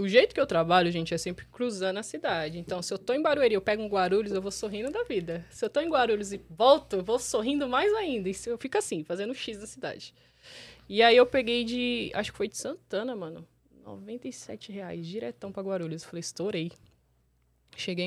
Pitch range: 180-250 Hz